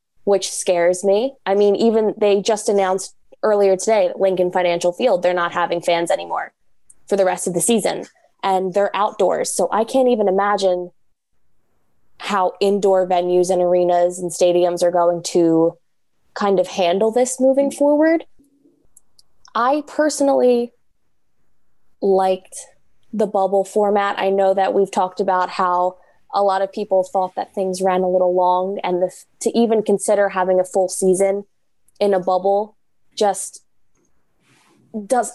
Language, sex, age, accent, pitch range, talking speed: English, female, 10-29, American, 185-220 Hz, 150 wpm